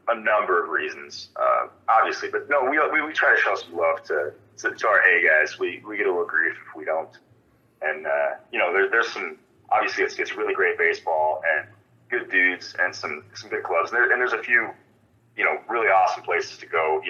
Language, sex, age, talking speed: English, male, 30-49, 230 wpm